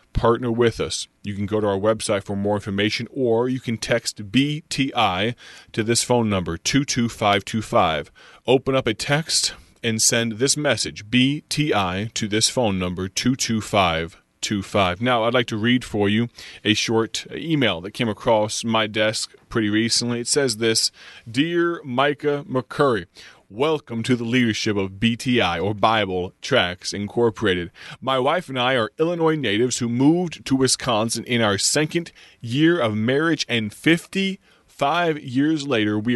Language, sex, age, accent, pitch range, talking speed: English, male, 30-49, American, 105-135 Hz, 150 wpm